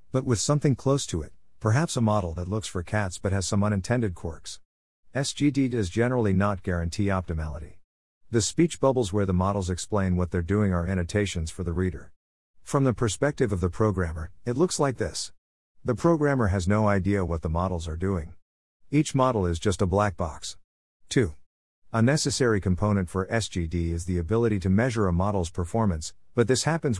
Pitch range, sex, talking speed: 85-115 Hz, male, 180 wpm